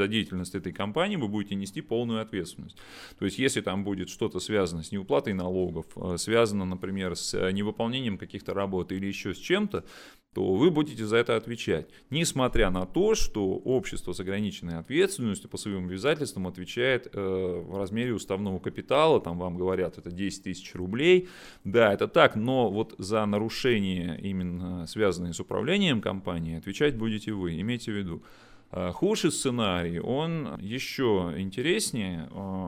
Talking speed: 150 wpm